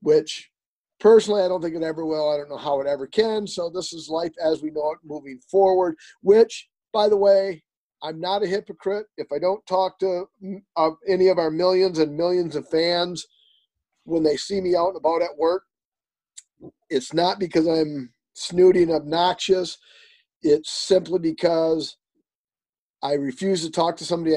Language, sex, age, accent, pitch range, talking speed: English, male, 40-59, American, 155-185 Hz, 170 wpm